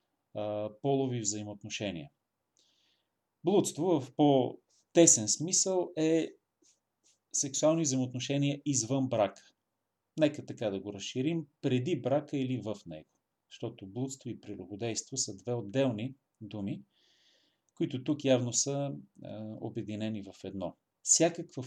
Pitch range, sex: 110-145 Hz, male